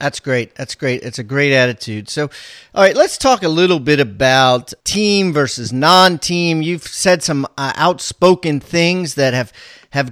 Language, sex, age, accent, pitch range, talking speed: English, male, 40-59, American, 130-165 Hz, 170 wpm